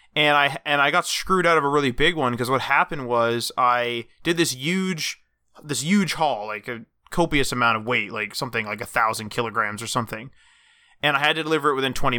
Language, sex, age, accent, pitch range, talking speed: English, male, 20-39, American, 125-160 Hz, 220 wpm